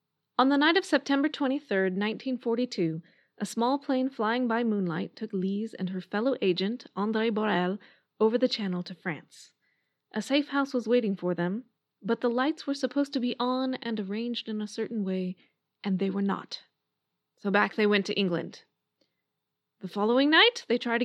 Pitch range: 195-255 Hz